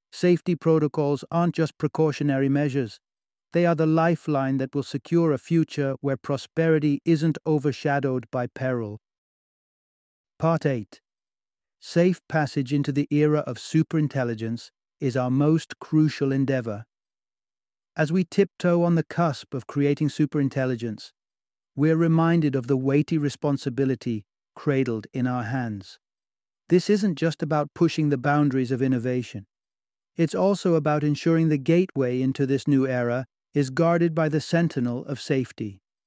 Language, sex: English, male